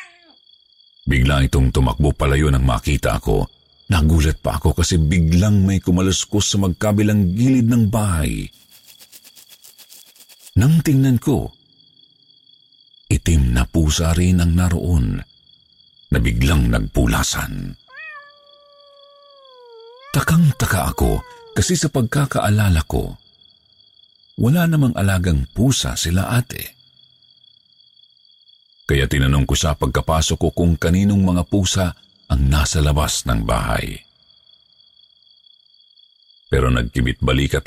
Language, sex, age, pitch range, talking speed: Filipino, male, 50-69, 75-110 Hz, 95 wpm